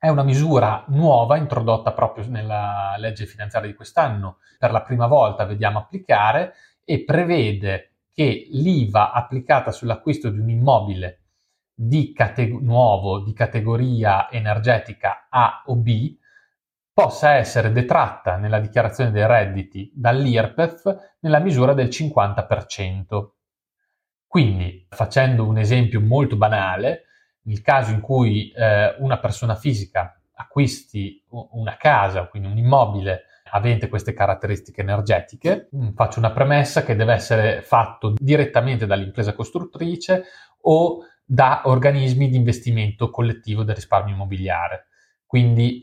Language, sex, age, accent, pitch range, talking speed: Italian, male, 30-49, native, 105-130 Hz, 115 wpm